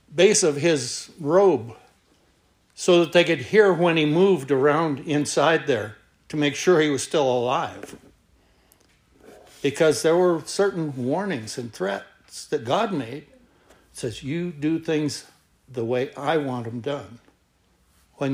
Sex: male